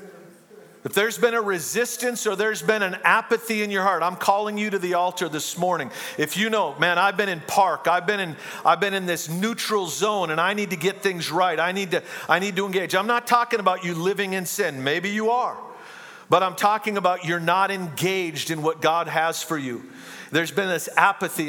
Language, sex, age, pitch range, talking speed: English, male, 50-69, 135-195 Hz, 225 wpm